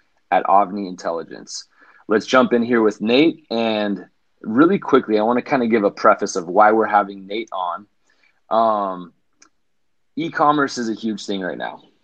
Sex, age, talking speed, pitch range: male, 30-49, 165 wpm, 100-120 Hz